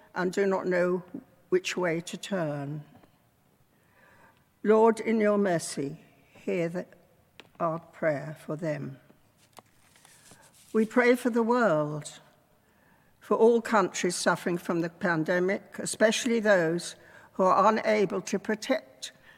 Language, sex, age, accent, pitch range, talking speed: English, female, 60-79, British, 170-215 Hz, 110 wpm